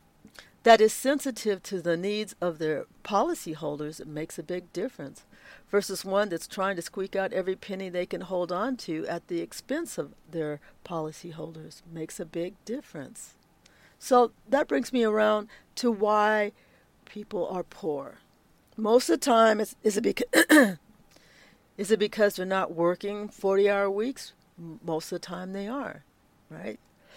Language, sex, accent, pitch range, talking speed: English, female, American, 180-230 Hz, 150 wpm